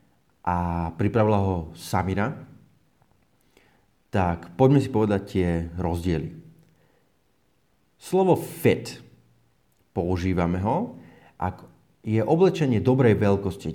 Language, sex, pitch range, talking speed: Slovak, male, 90-120 Hz, 85 wpm